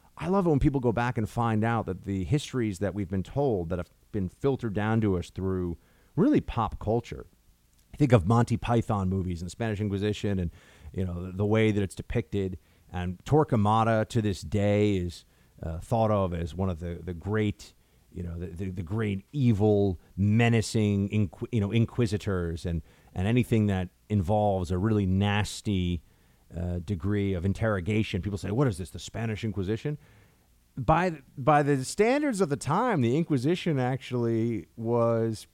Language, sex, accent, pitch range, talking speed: English, male, American, 95-125 Hz, 175 wpm